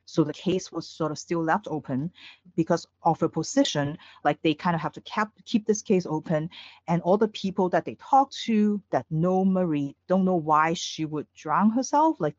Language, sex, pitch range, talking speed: English, female, 150-205 Hz, 205 wpm